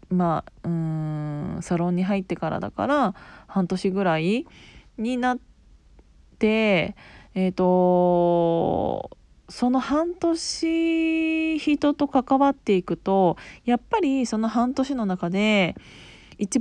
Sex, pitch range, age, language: female, 185-250 Hz, 20-39, Japanese